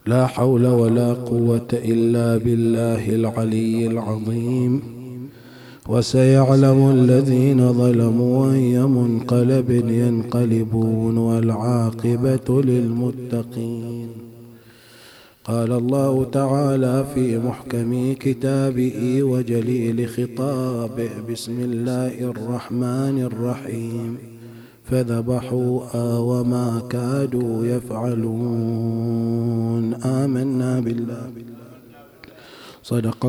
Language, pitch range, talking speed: English, 115-130 Hz, 60 wpm